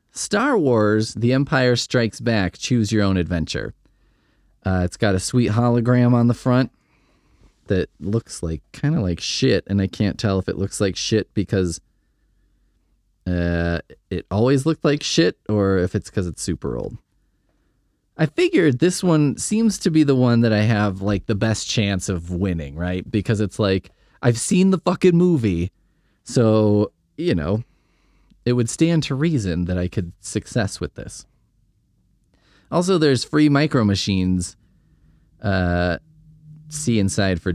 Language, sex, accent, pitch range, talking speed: English, male, American, 90-125 Hz, 160 wpm